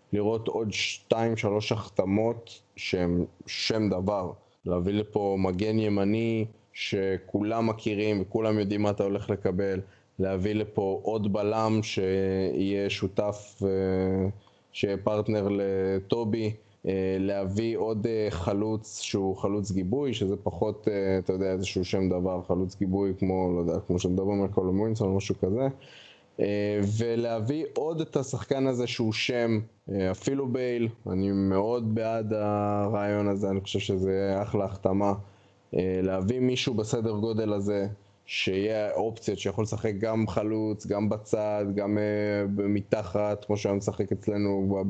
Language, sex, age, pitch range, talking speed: Hebrew, male, 20-39, 95-110 Hz, 115 wpm